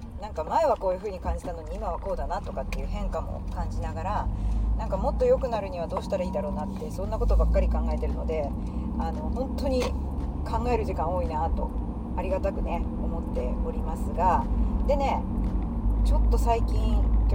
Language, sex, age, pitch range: Japanese, female, 40-59, 75-110 Hz